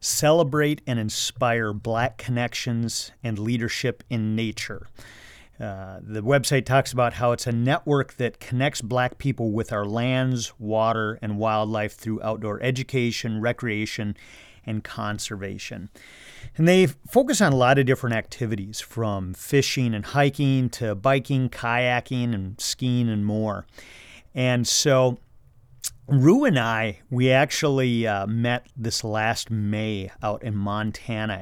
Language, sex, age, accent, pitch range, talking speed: English, male, 40-59, American, 110-125 Hz, 130 wpm